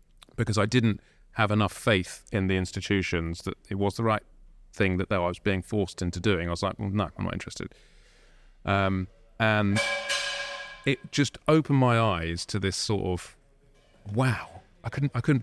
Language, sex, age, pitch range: English, male, 30-49, 95-120 Hz